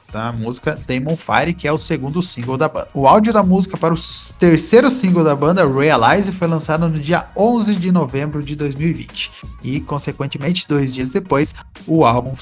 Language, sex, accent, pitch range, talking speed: Portuguese, male, Brazilian, 140-185 Hz, 185 wpm